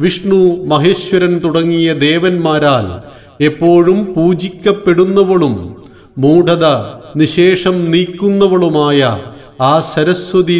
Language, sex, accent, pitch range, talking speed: Malayalam, male, native, 135-185 Hz, 60 wpm